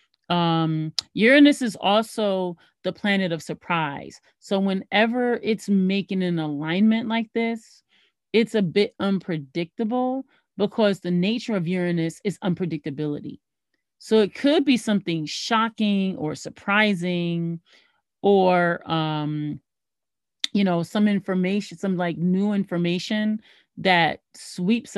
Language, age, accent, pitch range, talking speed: English, 30-49, American, 165-210 Hz, 115 wpm